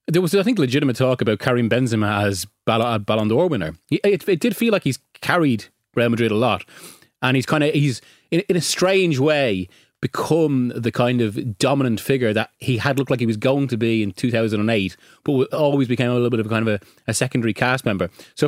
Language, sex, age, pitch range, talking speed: English, male, 30-49, 115-145 Hz, 225 wpm